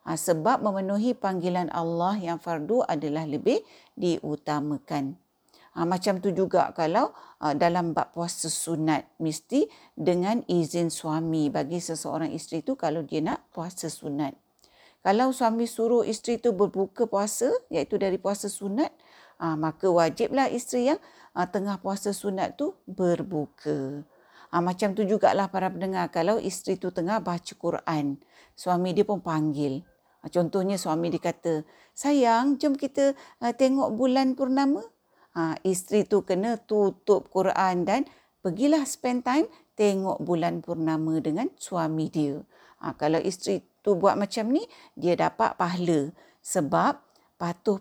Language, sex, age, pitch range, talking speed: Malay, female, 50-69, 165-220 Hz, 130 wpm